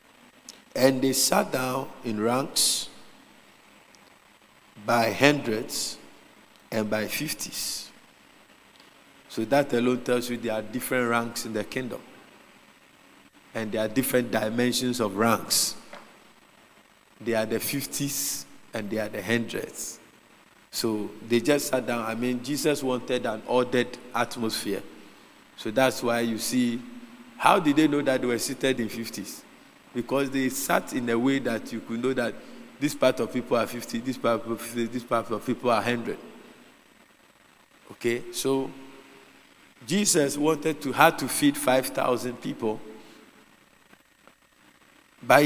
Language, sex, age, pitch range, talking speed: English, male, 50-69, 115-140 Hz, 140 wpm